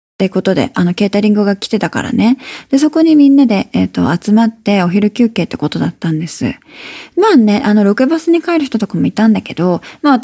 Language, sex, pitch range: Japanese, female, 200-280 Hz